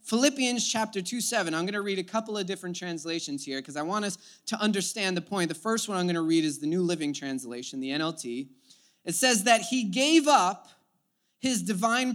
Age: 20-39